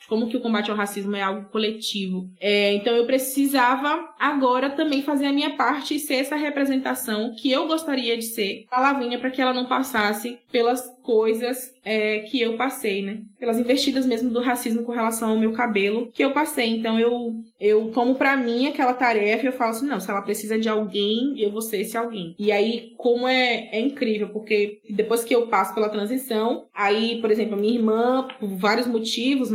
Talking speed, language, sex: 200 wpm, Portuguese, female